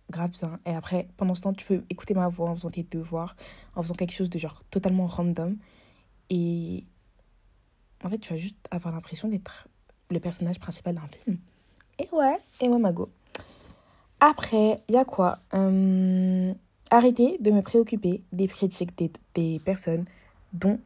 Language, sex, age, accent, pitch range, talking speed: French, female, 20-39, French, 170-200 Hz, 175 wpm